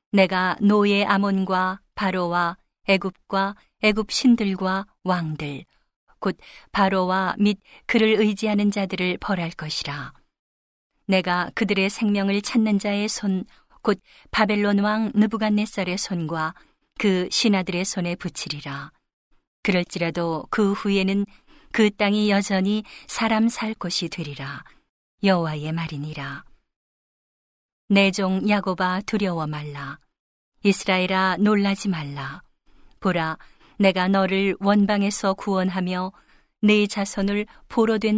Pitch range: 180-205 Hz